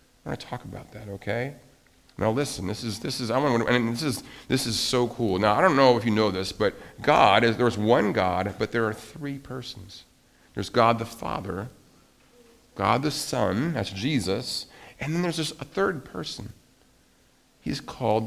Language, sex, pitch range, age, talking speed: English, male, 105-140 Hz, 50-69, 195 wpm